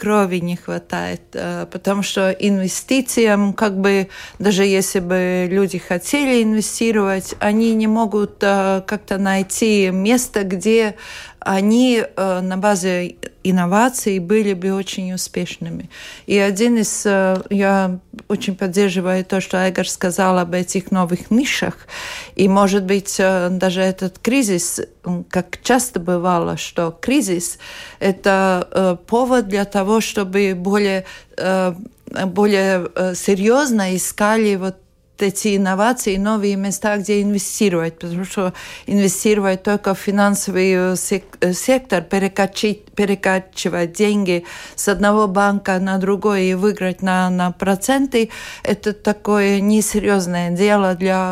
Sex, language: female, Russian